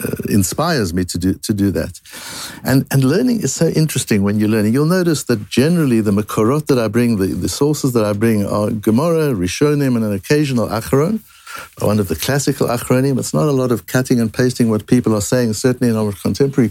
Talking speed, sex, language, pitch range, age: 215 wpm, male, English, 110-165 Hz, 60-79